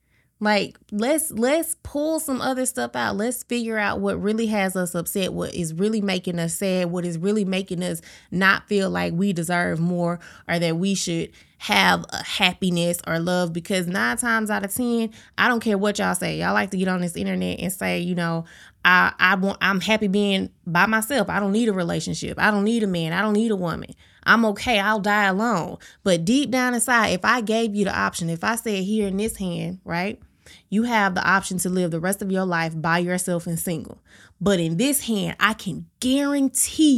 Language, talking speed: English, 215 wpm